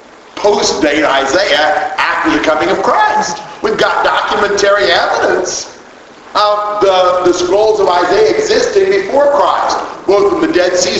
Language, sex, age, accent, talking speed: English, male, 50-69, American, 140 wpm